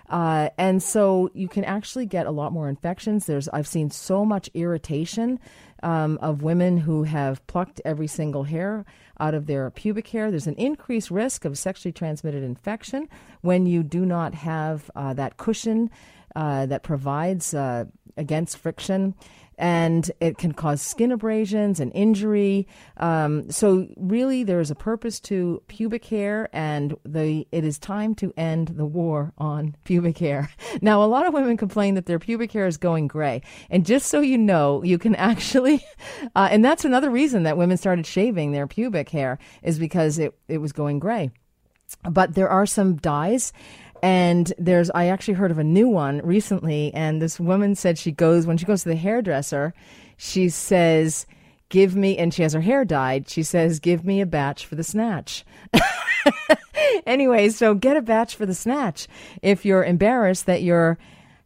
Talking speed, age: 180 wpm, 40-59